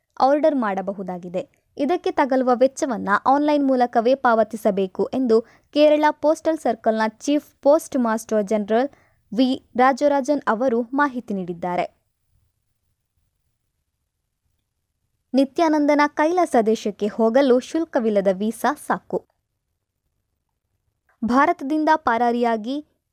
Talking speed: 80 wpm